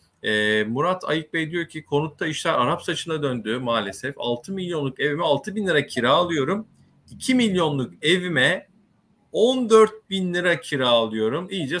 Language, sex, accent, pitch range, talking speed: Turkish, male, native, 120-160 Hz, 140 wpm